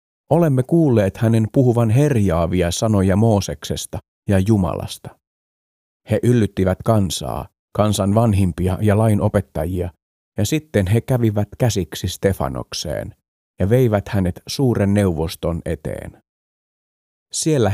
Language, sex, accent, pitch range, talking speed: Finnish, male, native, 90-115 Hz, 100 wpm